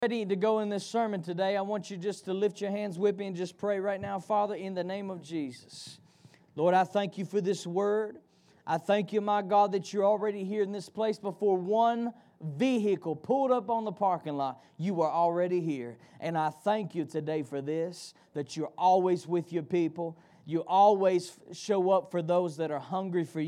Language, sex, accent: English, male, American